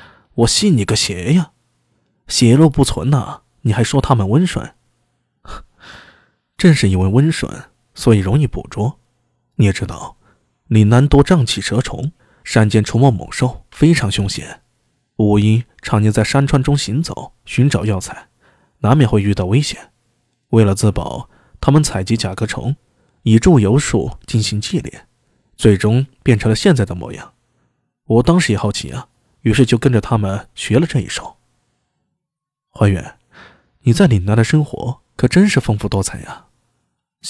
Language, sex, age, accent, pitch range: Chinese, male, 20-39, native, 105-135 Hz